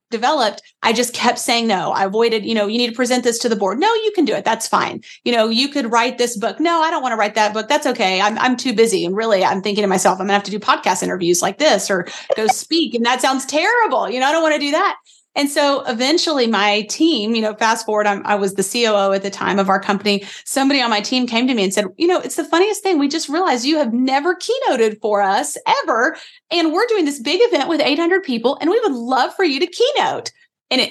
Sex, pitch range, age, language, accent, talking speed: female, 220-295 Hz, 30-49, English, American, 270 wpm